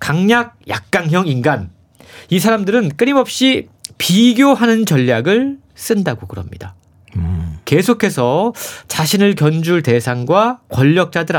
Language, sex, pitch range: Korean, male, 130-215 Hz